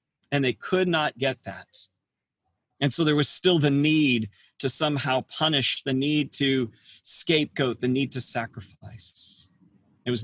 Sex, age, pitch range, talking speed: male, 40-59, 125-155 Hz, 150 wpm